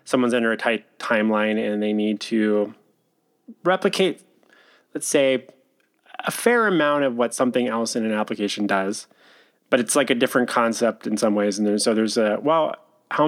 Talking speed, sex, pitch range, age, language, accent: 175 wpm, male, 110-135 Hz, 20-39, English, American